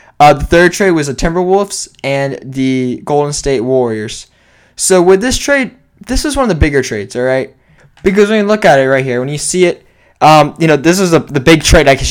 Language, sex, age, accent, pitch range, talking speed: English, male, 10-29, American, 135-180 Hz, 240 wpm